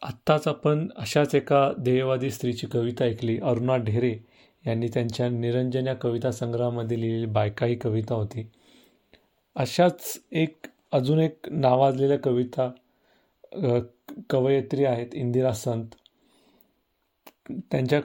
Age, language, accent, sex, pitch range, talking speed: 40-59, Marathi, native, male, 115-140 Hz, 95 wpm